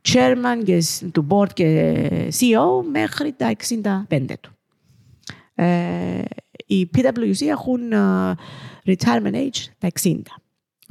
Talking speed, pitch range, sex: 105 wpm, 165-245 Hz, female